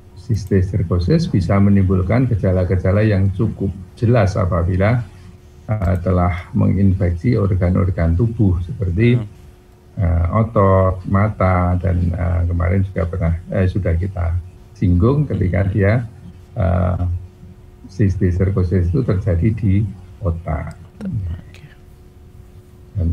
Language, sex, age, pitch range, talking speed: Indonesian, male, 50-69, 90-100 Hz, 90 wpm